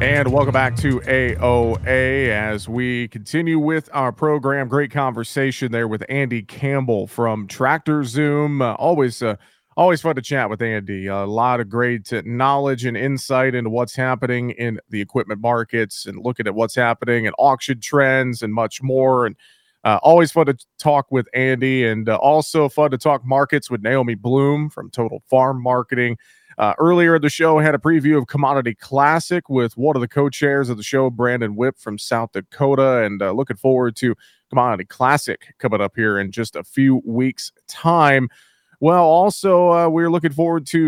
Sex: male